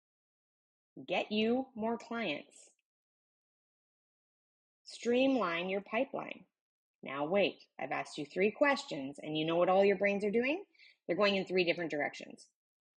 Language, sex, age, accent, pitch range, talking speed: English, female, 20-39, American, 175-255 Hz, 135 wpm